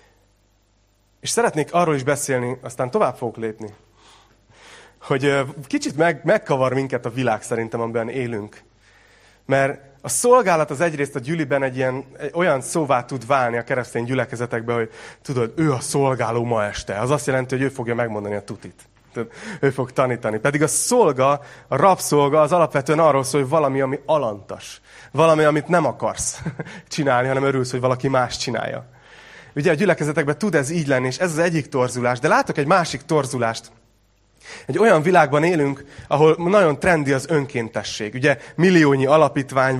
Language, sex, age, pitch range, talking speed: Hungarian, male, 30-49, 120-150 Hz, 160 wpm